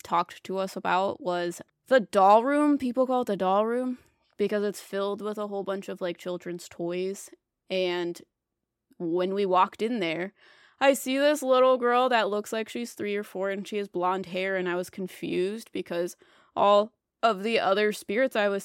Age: 20-39